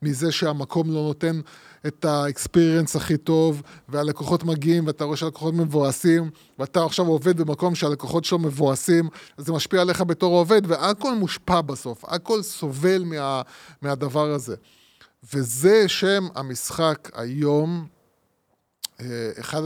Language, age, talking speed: Hebrew, 20-39, 120 wpm